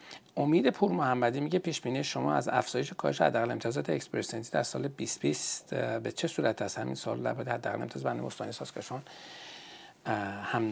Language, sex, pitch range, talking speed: Persian, male, 110-130 Hz, 160 wpm